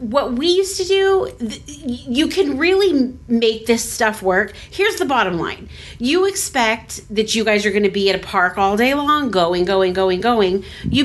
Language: English